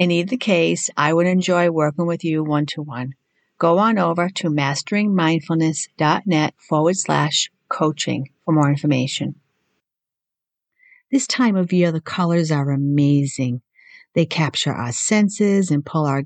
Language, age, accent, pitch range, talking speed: English, 50-69, American, 145-190 Hz, 135 wpm